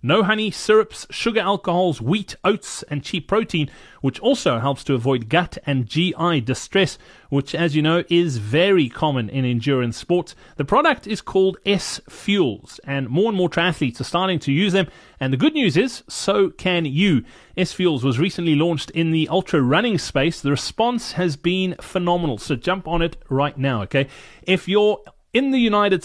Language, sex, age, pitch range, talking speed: English, male, 30-49, 145-200 Hz, 180 wpm